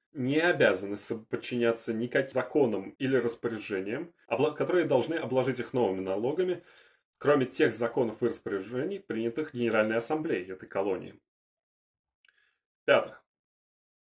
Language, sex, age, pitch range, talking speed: Russian, male, 30-49, 110-130 Hz, 100 wpm